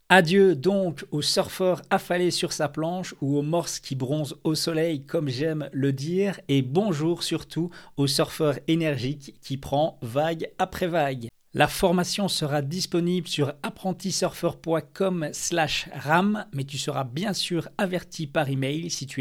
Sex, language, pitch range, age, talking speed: male, French, 140-180 Hz, 40-59, 150 wpm